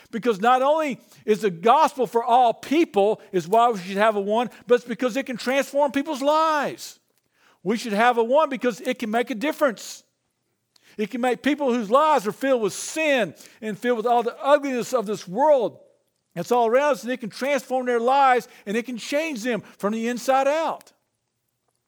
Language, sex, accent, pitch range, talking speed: English, male, American, 210-265 Hz, 200 wpm